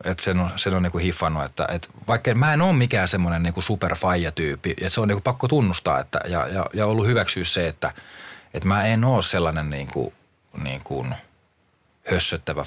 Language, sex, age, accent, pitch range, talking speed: Finnish, male, 30-49, native, 85-105 Hz, 165 wpm